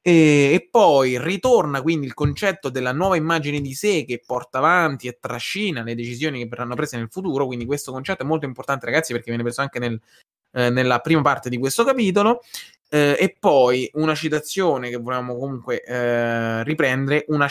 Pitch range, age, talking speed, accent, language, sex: 125-155 Hz, 20-39, 180 wpm, native, Italian, male